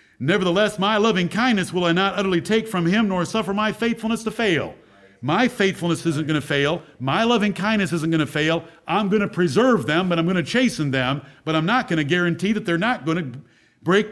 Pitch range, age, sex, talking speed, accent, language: 140-200 Hz, 50-69, male, 225 wpm, American, English